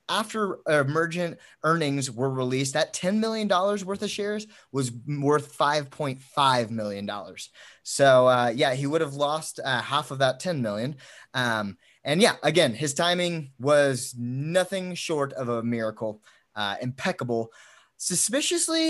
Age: 20-39